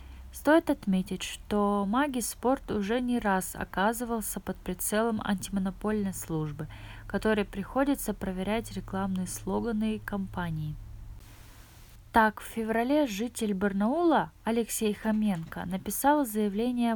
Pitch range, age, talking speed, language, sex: 180-225 Hz, 20-39, 100 wpm, Russian, female